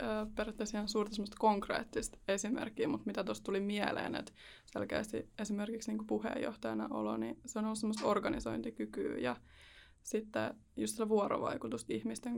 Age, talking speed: 20-39, 125 wpm